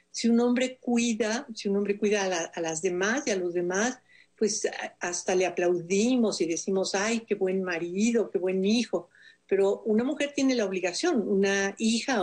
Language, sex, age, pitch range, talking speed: Spanish, female, 50-69, 180-235 Hz, 185 wpm